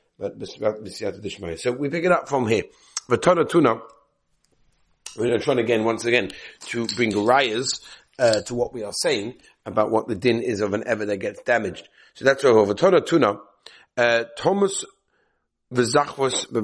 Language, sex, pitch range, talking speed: English, male, 110-135 Hz, 150 wpm